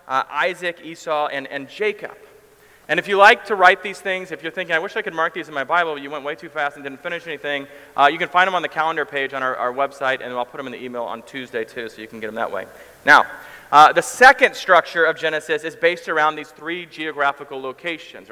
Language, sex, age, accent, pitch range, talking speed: English, male, 30-49, American, 145-180 Hz, 260 wpm